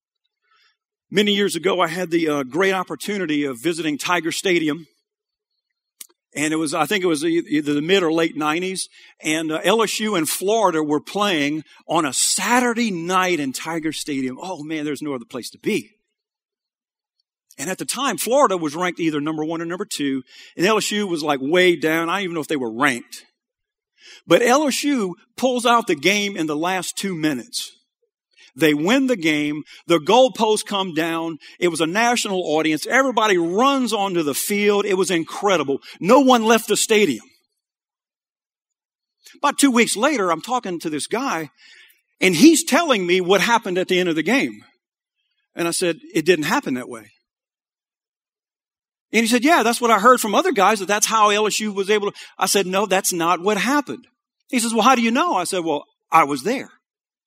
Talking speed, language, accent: 190 wpm, English, American